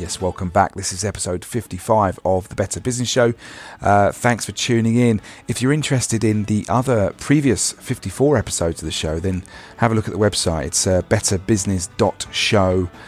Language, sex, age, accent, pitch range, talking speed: English, male, 40-59, British, 95-115 Hz, 180 wpm